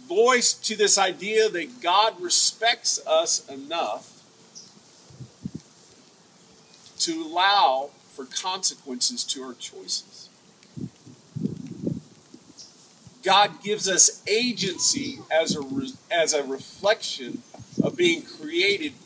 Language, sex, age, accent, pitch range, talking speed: English, male, 50-69, American, 195-260 Hz, 90 wpm